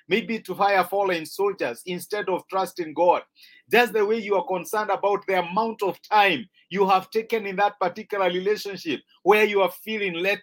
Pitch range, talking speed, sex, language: 180-215 Hz, 185 wpm, male, English